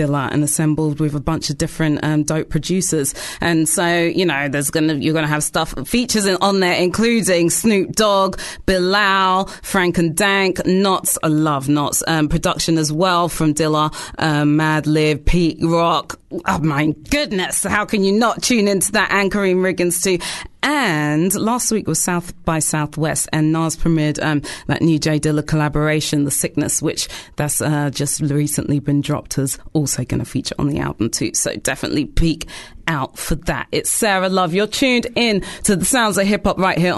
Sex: female